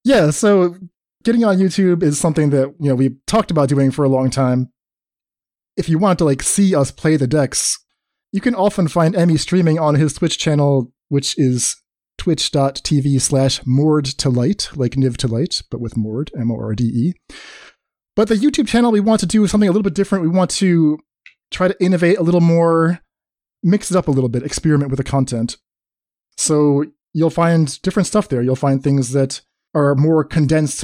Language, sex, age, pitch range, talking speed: English, male, 20-39, 130-170 Hz, 195 wpm